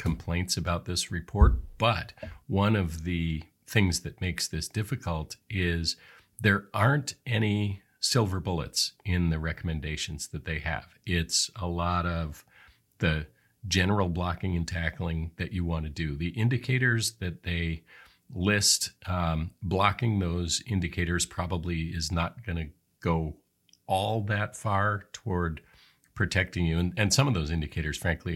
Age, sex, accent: 40-59, male, American